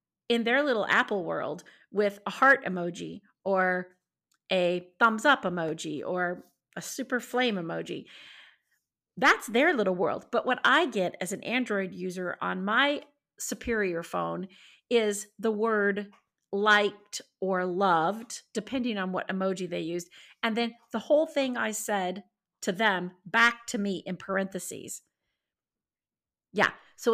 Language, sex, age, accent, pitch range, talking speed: English, female, 40-59, American, 195-270 Hz, 140 wpm